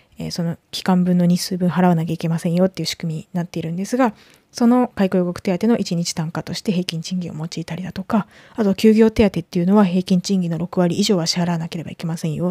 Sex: female